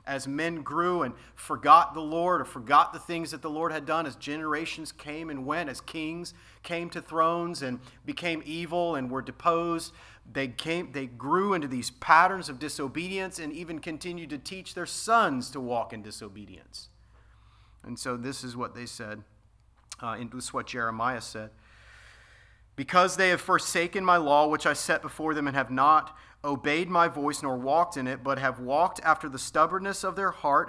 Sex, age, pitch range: male, 40-59, 125-170 Hz